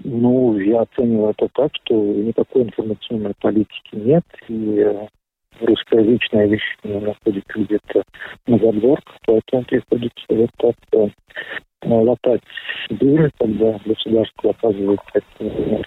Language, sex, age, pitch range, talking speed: Russian, male, 50-69, 110-140 Hz, 105 wpm